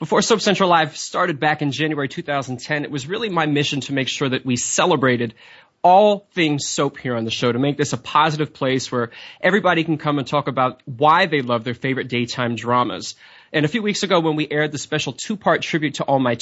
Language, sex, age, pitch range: English, male, 20-39, 135-160 Hz